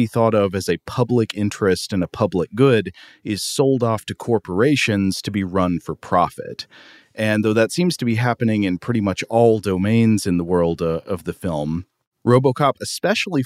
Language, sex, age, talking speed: English, male, 40-59, 185 wpm